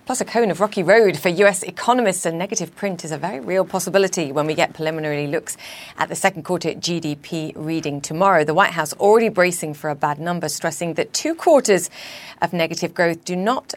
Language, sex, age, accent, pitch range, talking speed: English, female, 40-59, British, 150-185 Hz, 200 wpm